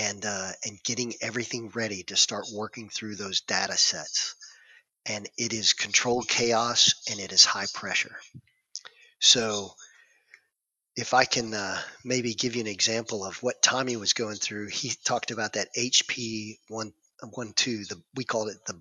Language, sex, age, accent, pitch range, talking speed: English, male, 40-59, American, 105-120 Hz, 165 wpm